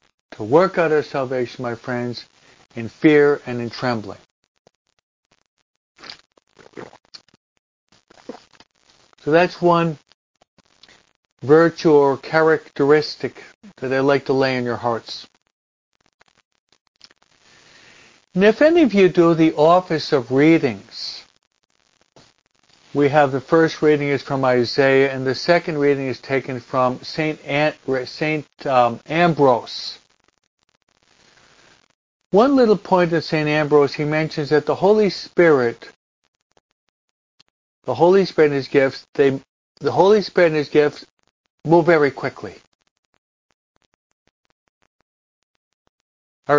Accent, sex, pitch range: American, male, 130-170 Hz